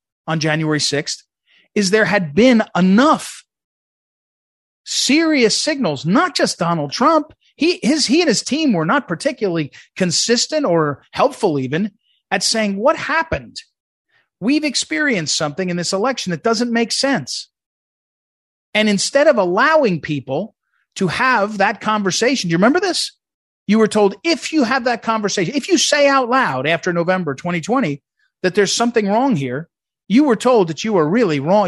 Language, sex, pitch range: English, male, 170-245 Hz